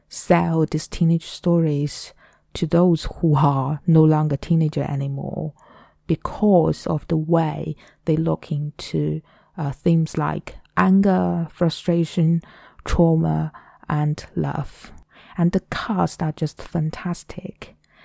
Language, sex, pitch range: Chinese, female, 150-175 Hz